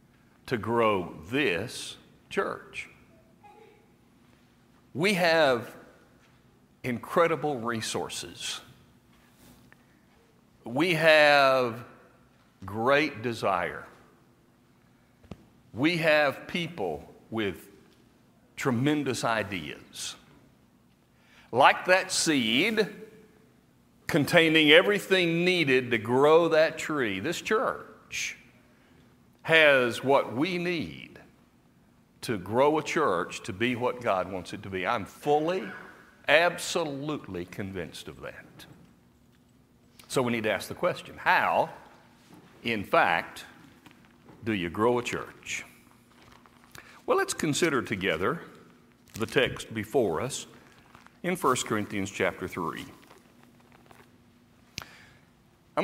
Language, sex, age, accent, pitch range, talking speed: English, male, 60-79, American, 120-165 Hz, 85 wpm